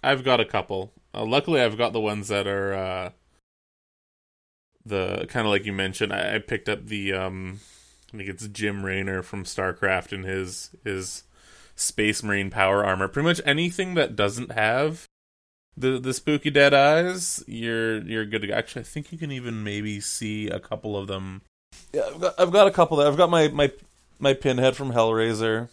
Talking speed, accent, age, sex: 190 wpm, American, 20-39, male